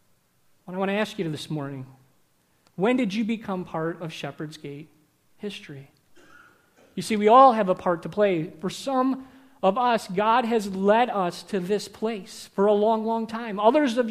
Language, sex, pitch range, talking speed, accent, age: English, male, 180-225 Hz, 185 wpm, American, 30-49